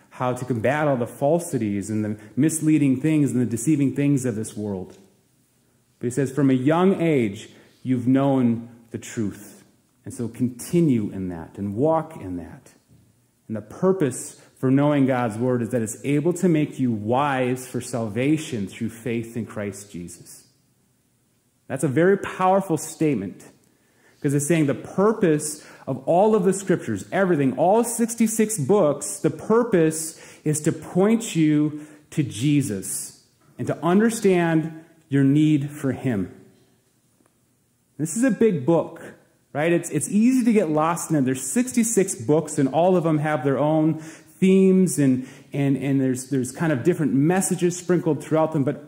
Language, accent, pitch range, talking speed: English, American, 125-165 Hz, 160 wpm